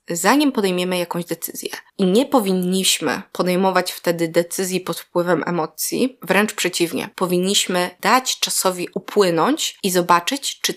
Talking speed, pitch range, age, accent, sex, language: 125 wpm, 180-230 Hz, 20-39, native, female, Polish